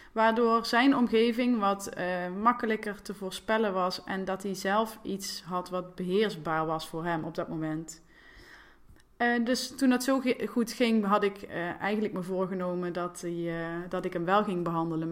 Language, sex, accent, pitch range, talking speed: Dutch, female, Dutch, 180-210 Hz, 185 wpm